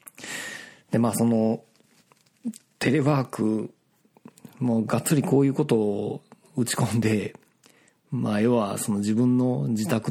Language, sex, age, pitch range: Japanese, male, 40-59, 110-140 Hz